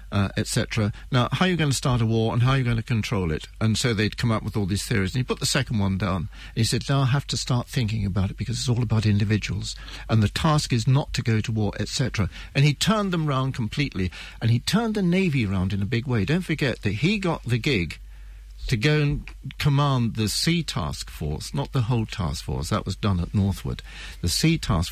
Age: 60-79